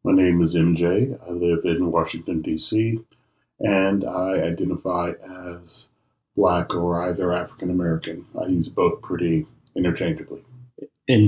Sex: male